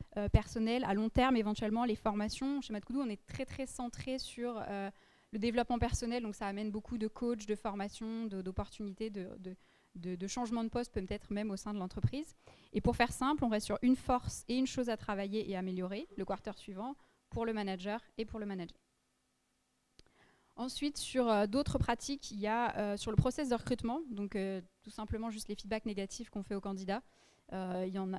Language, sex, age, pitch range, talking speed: French, female, 20-39, 195-240 Hz, 205 wpm